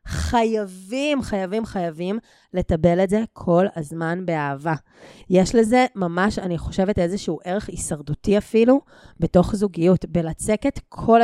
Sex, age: female, 20-39